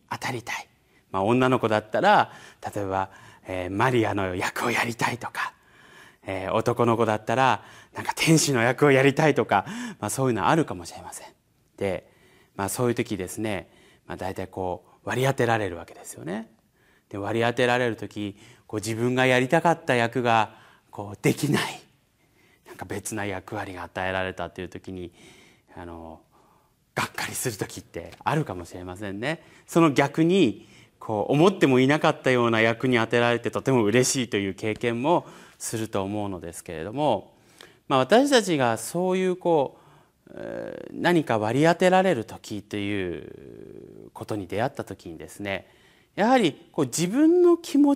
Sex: male